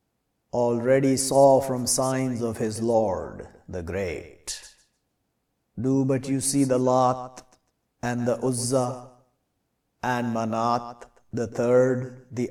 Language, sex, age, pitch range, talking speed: English, male, 50-69, 110-135 Hz, 110 wpm